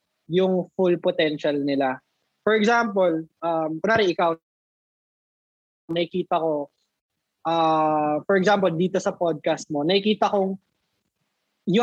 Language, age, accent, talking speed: English, 20-39, Filipino, 105 wpm